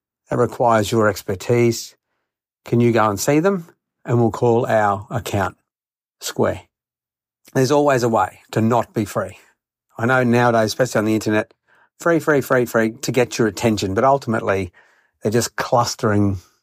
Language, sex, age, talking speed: English, male, 50-69, 160 wpm